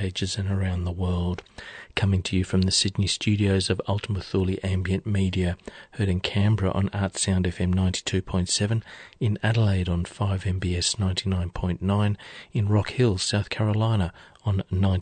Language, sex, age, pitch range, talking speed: English, male, 40-59, 90-105 Hz, 145 wpm